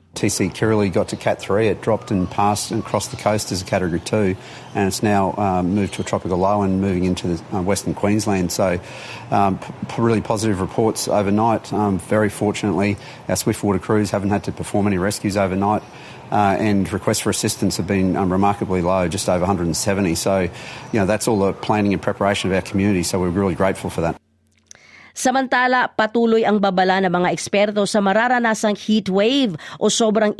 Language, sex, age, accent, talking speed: Filipino, male, 40-59, Australian, 190 wpm